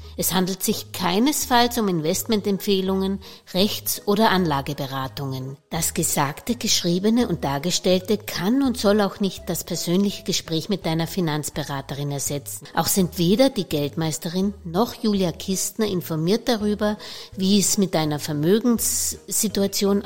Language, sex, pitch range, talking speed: German, female, 160-210 Hz, 125 wpm